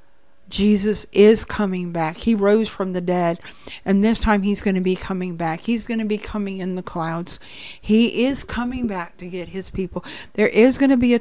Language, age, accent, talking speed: English, 50-69, American, 215 wpm